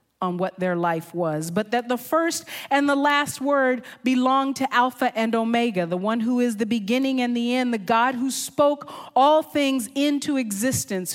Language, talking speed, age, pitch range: English, 190 wpm, 40-59, 170-235 Hz